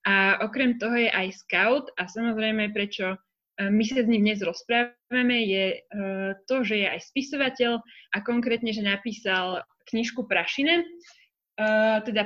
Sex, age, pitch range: female, 20-39, 215-255 Hz